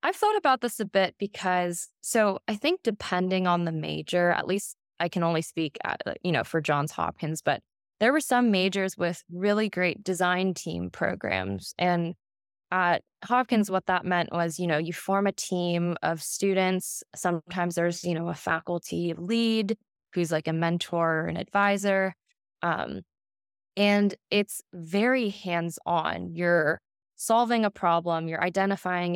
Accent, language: American, English